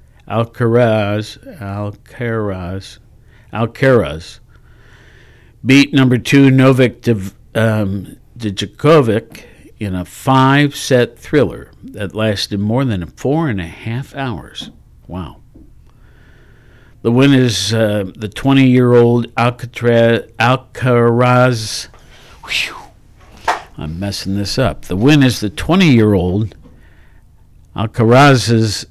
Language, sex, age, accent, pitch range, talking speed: English, male, 60-79, American, 90-120 Hz, 85 wpm